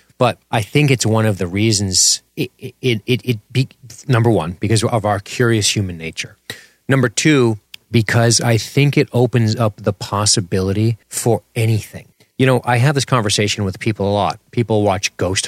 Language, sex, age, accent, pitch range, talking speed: English, male, 30-49, American, 95-120 Hz, 180 wpm